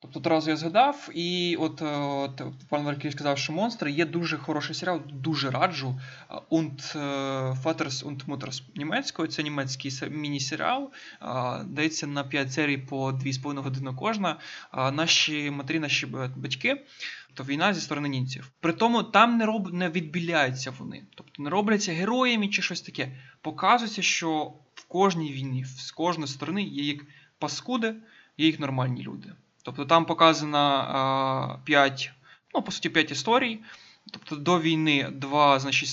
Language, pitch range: Ukrainian, 135-170 Hz